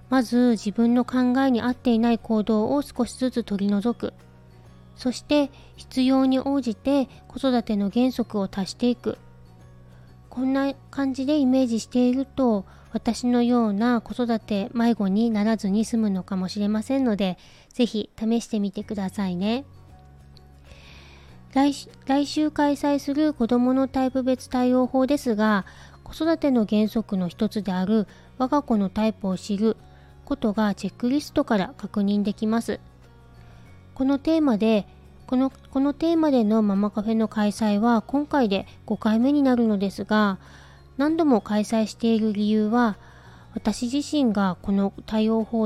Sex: female